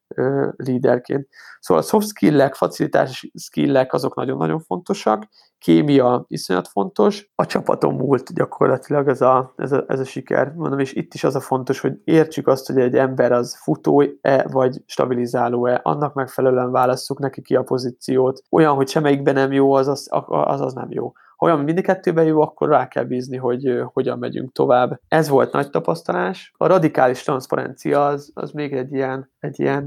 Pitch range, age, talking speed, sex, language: 130-150 Hz, 20-39, 175 wpm, male, Hungarian